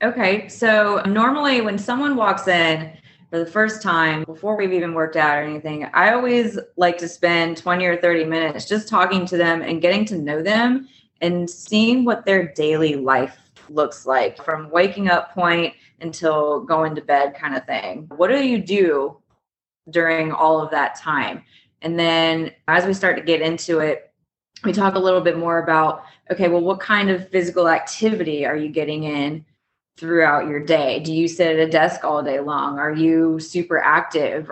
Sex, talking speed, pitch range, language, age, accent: female, 185 wpm, 155-190 Hz, English, 20-39, American